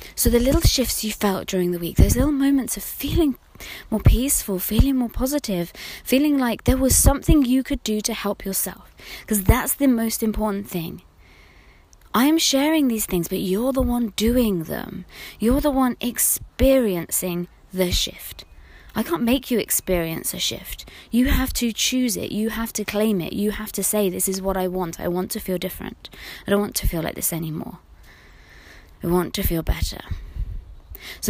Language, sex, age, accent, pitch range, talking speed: English, female, 20-39, British, 175-235 Hz, 190 wpm